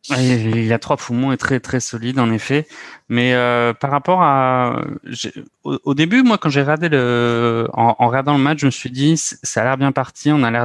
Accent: French